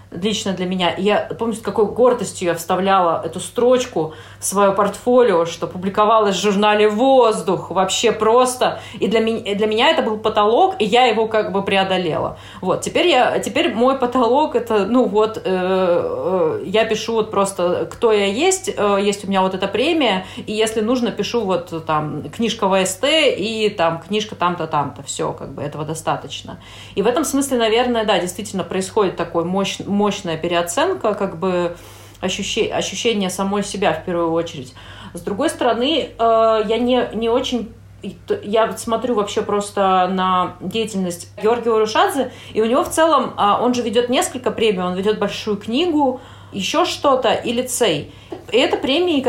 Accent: native